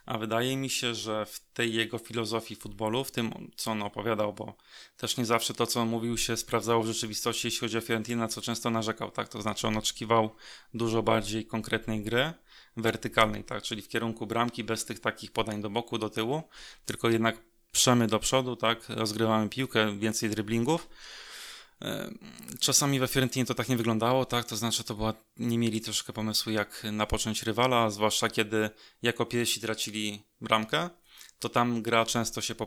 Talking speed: 180 wpm